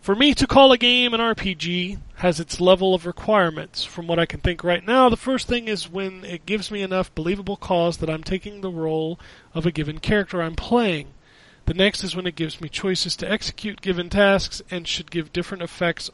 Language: English